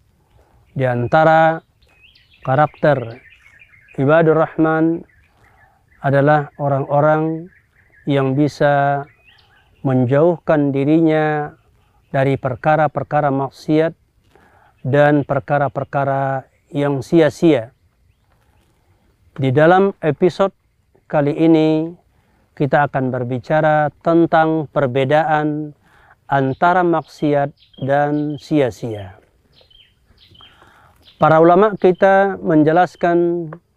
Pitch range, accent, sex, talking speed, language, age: 135-170 Hz, native, male, 65 wpm, Indonesian, 40-59